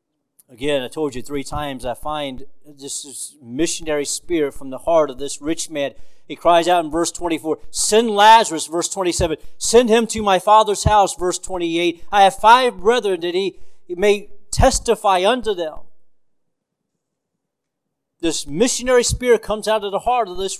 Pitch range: 150-225 Hz